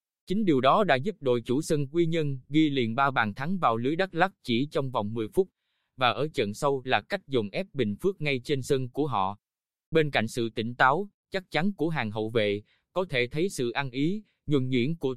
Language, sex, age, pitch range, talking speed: Vietnamese, male, 20-39, 120-165 Hz, 235 wpm